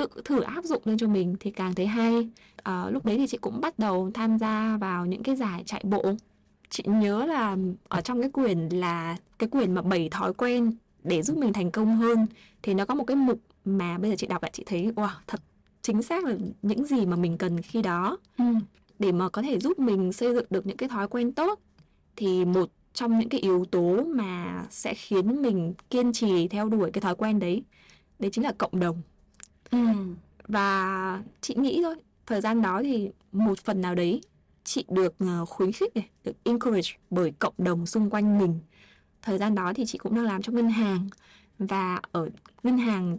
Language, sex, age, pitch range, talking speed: Vietnamese, female, 20-39, 185-230 Hz, 205 wpm